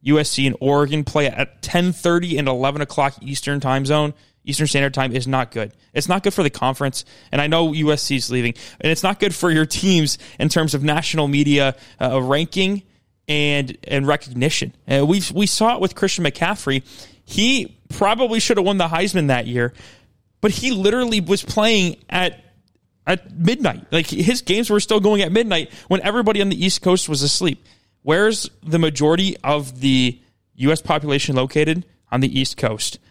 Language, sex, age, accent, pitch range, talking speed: English, male, 20-39, American, 135-180 Hz, 185 wpm